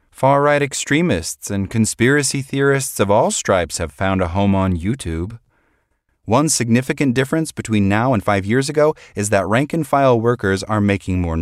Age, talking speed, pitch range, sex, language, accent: 30-49, 160 wpm, 85-120 Hz, male, English, American